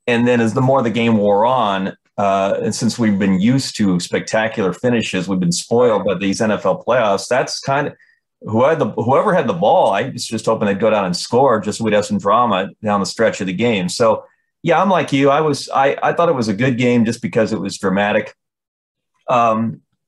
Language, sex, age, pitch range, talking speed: English, male, 30-49, 100-120 Hz, 225 wpm